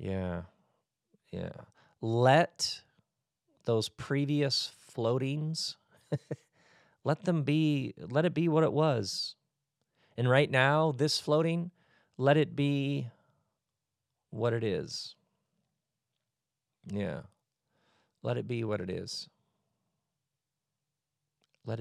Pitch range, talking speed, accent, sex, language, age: 95-140 Hz, 95 wpm, American, male, English, 40-59